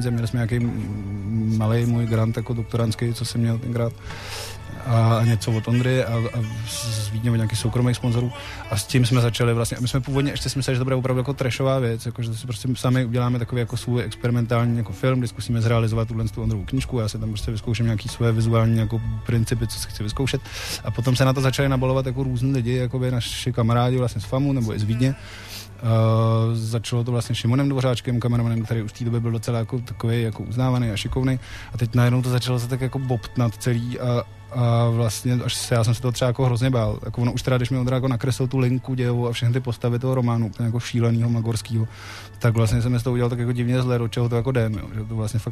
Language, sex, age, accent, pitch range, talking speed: Czech, male, 20-39, native, 115-125 Hz, 235 wpm